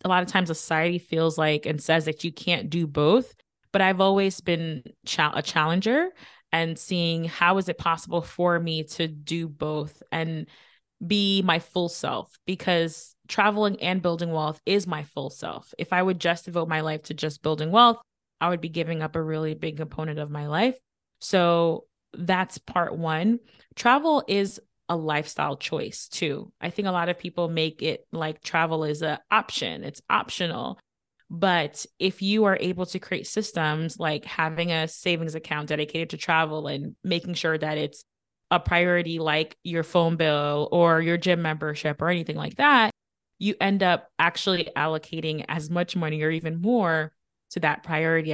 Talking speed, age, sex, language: 175 wpm, 20-39, female, English